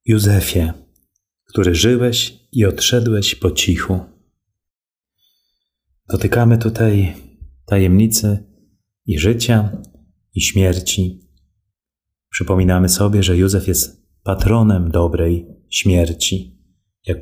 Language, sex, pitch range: Polish, male, 85-100 Hz